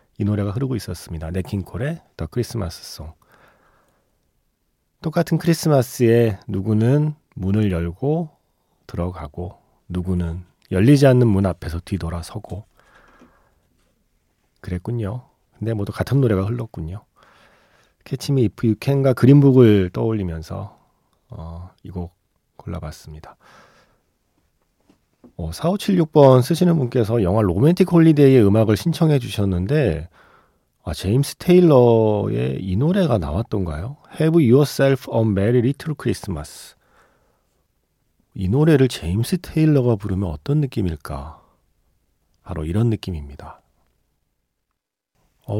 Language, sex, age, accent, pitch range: Korean, male, 40-59, native, 90-135 Hz